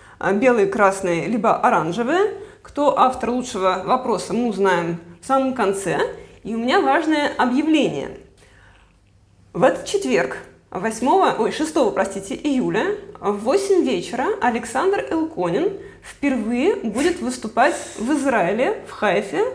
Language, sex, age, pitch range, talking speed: Russian, female, 20-39, 220-320 Hz, 105 wpm